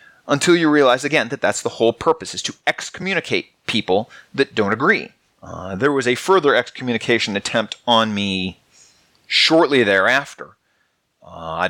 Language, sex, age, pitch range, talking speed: English, male, 30-49, 115-190 Hz, 150 wpm